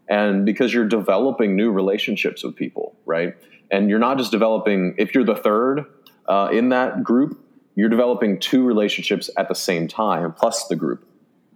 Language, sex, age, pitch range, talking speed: English, male, 30-49, 90-105 Hz, 170 wpm